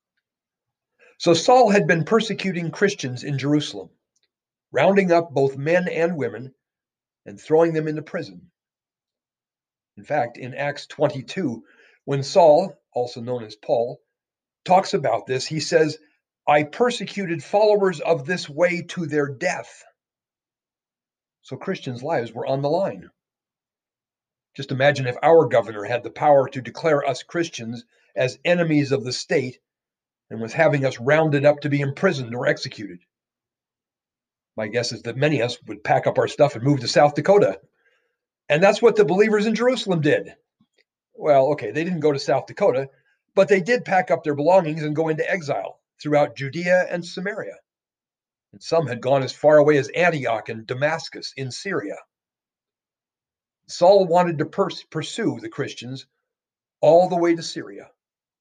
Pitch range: 135-175 Hz